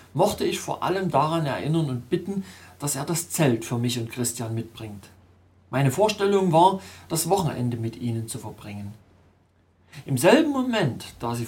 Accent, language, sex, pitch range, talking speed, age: German, German, male, 110-160 Hz, 160 wpm, 40-59